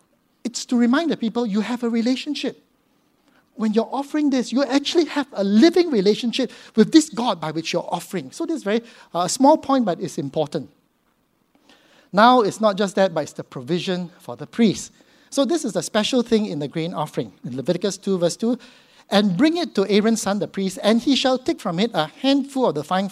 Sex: male